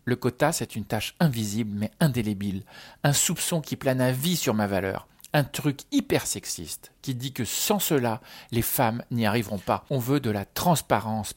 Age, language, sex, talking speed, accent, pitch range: 50-69, French, male, 190 wpm, French, 105-135 Hz